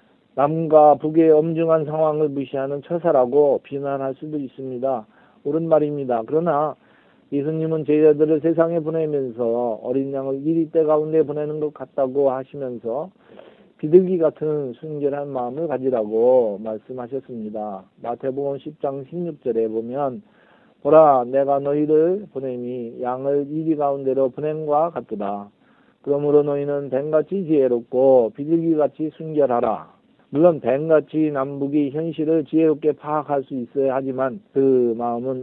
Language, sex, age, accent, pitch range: Korean, male, 40-59, native, 130-155 Hz